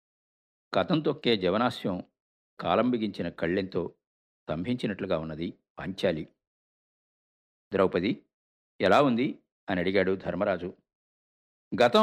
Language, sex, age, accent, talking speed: Telugu, male, 50-69, native, 75 wpm